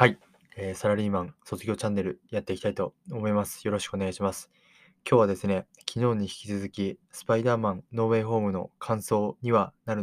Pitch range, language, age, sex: 95-120 Hz, Japanese, 20-39, male